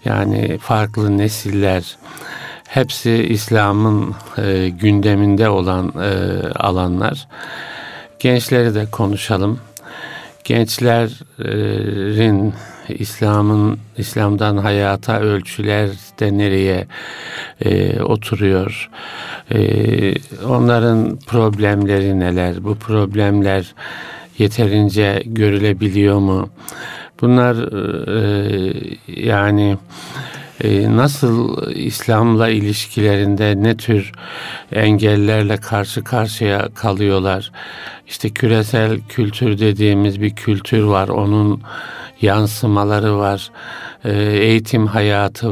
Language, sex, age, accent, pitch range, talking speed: Turkish, male, 60-79, native, 100-115 Hz, 70 wpm